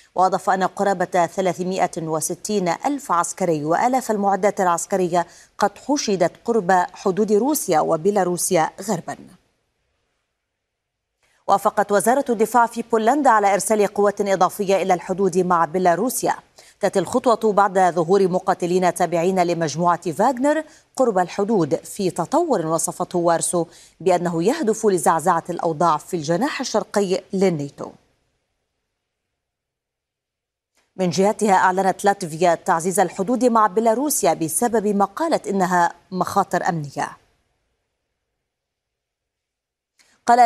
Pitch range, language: 175-220 Hz, Arabic